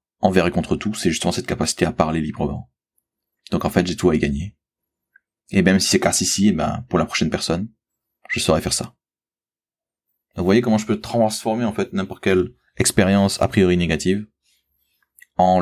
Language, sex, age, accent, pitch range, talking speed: French, male, 30-49, French, 85-105 Hz, 200 wpm